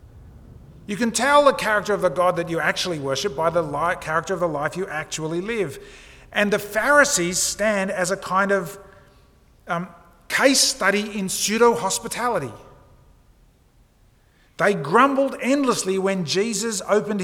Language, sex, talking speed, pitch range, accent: English, male, 140 wpm, 115-195 Hz, Australian